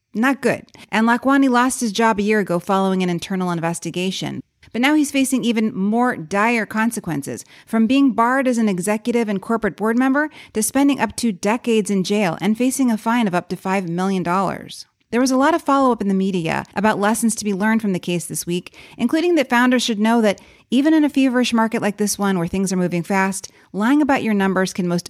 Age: 30-49